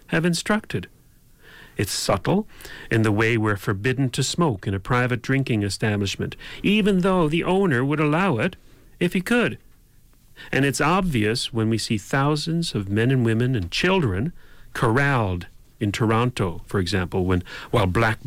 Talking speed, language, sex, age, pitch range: 155 wpm, English, male, 40-59, 105-135 Hz